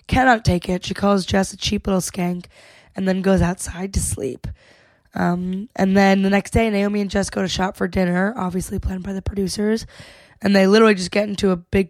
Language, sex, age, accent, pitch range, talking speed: English, female, 20-39, American, 180-210 Hz, 215 wpm